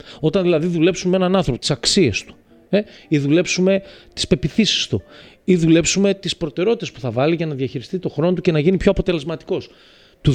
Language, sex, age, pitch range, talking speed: Greek, male, 30-49, 155-225 Hz, 205 wpm